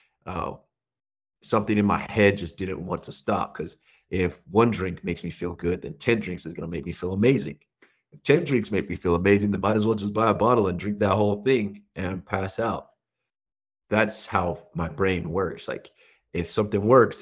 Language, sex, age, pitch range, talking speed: English, male, 30-49, 90-105 Hz, 215 wpm